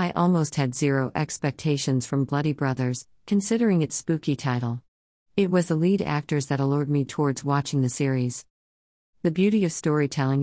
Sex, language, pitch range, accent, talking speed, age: female, English, 130-165 Hz, American, 160 wpm, 50-69